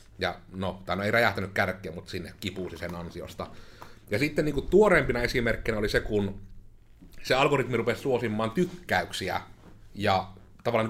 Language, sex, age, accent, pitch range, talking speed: Finnish, male, 30-49, native, 100-140 Hz, 140 wpm